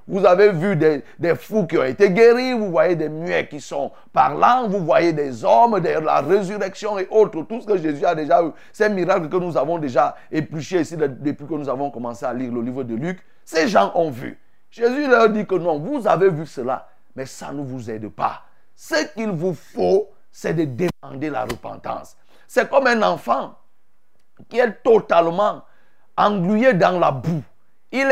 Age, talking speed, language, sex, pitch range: 50-69, 195 wpm, French, male, 160-235 Hz